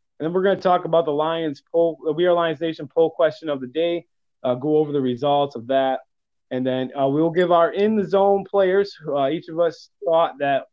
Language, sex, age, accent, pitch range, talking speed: English, male, 20-39, American, 135-170 Hz, 235 wpm